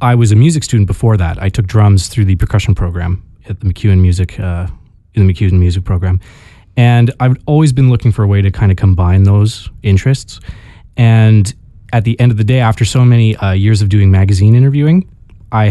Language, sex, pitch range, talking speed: English, male, 95-120 Hz, 195 wpm